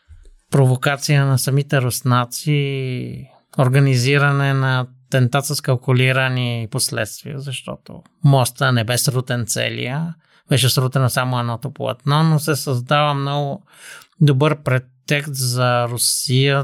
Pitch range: 125-140 Hz